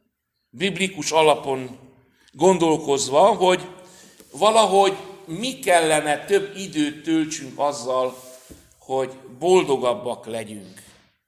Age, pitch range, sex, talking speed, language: 60-79, 145-195 Hz, male, 75 wpm, Hungarian